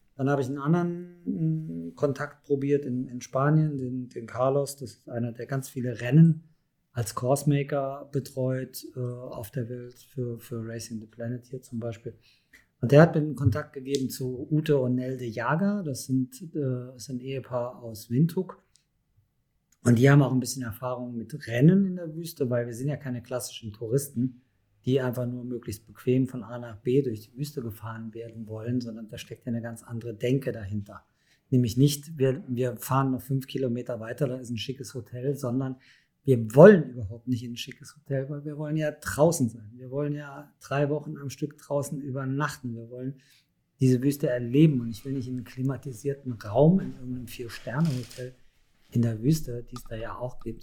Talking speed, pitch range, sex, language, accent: 190 wpm, 120-140 Hz, male, German, German